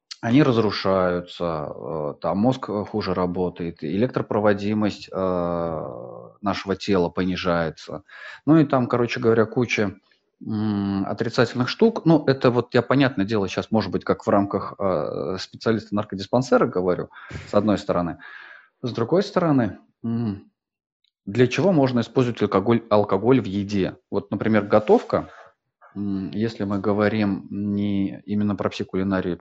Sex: male